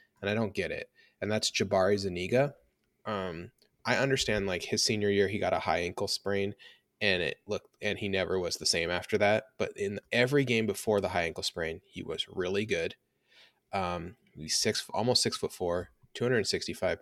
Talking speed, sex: 190 wpm, male